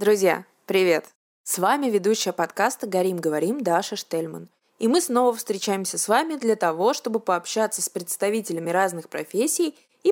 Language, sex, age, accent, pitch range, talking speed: Russian, female, 20-39, native, 185-245 Hz, 150 wpm